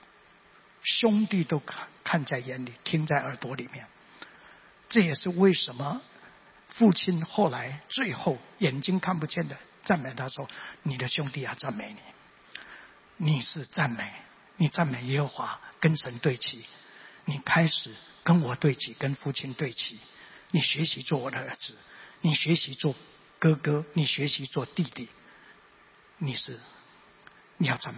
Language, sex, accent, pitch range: Chinese, male, native, 145-235 Hz